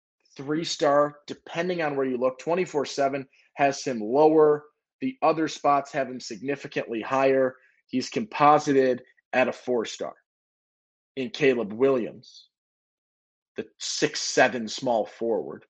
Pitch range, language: 130-170 Hz, English